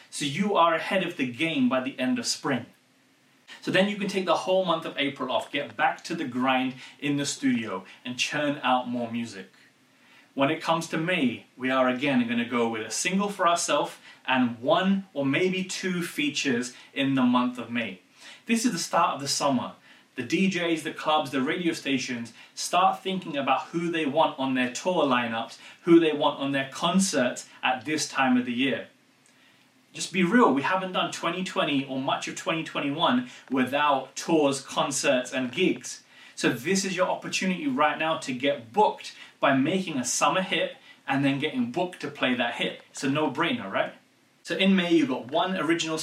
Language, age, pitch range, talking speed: English, 30-49, 135-185 Hz, 195 wpm